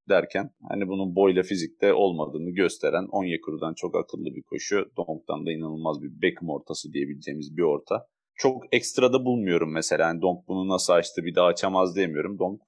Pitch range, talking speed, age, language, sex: 85-115 Hz, 165 wpm, 30-49, Turkish, male